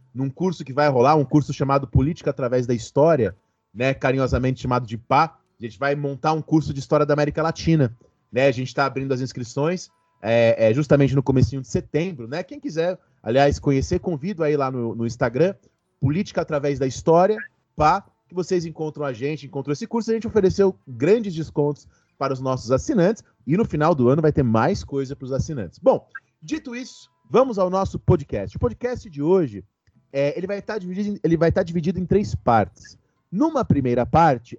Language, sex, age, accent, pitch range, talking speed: Portuguese, male, 30-49, Brazilian, 130-175 Hz, 190 wpm